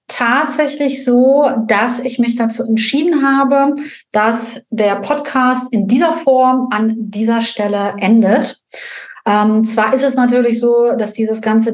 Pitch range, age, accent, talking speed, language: 215-250 Hz, 30-49, German, 140 wpm, German